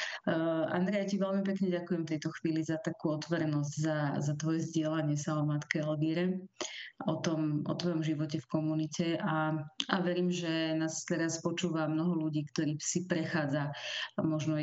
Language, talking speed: Slovak, 155 wpm